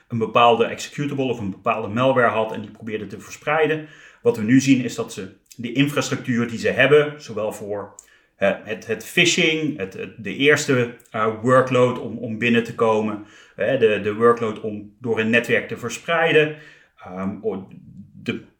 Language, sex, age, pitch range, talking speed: Dutch, male, 30-49, 110-140 Hz, 155 wpm